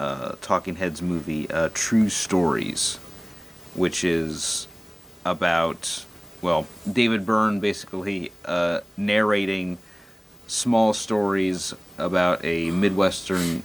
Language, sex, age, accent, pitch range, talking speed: English, male, 40-59, American, 80-95 Hz, 90 wpm